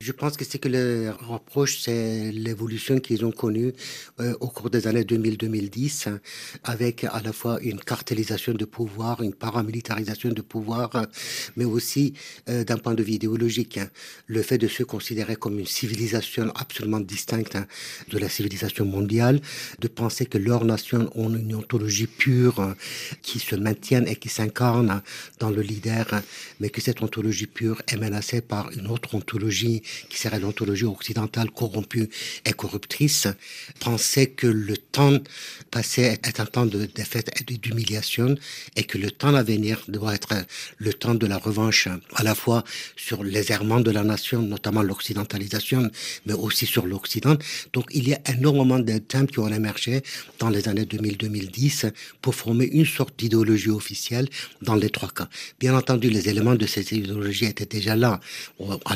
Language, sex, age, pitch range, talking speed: French, male, 60-79, 105-120 Hz, 165 wpm